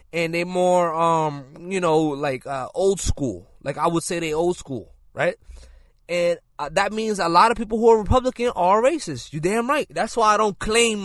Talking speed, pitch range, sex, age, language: 210 wpm, 135-215 Hz, male, 20-39, English